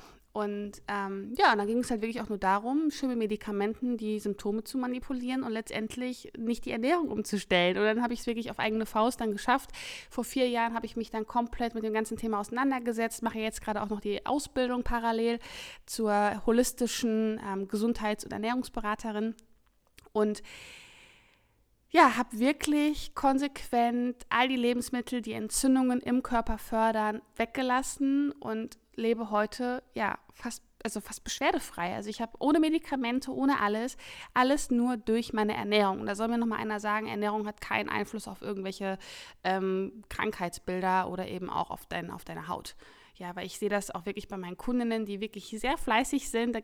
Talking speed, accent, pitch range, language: 170 wpm, German, 210-250 Hz, German